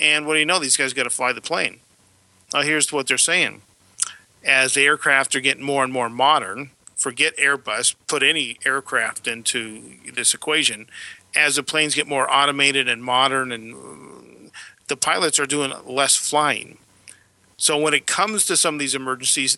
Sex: male